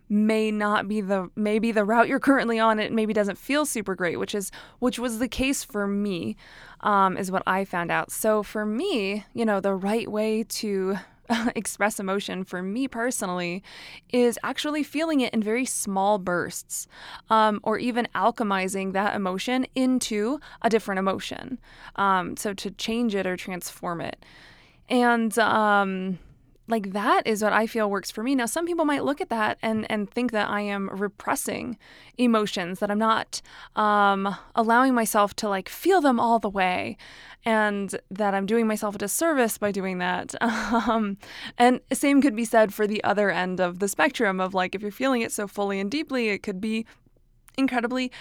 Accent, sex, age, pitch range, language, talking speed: American, female, 20-39, 200-235 Hz, English, 185 wpm